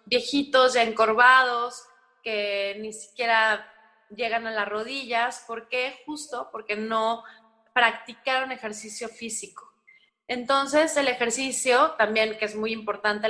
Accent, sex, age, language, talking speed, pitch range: Mexican, female, 20-39, English, 115 wpm, 210-250 Hz